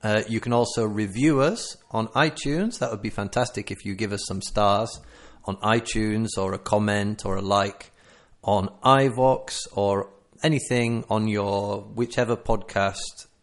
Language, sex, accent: English, male, British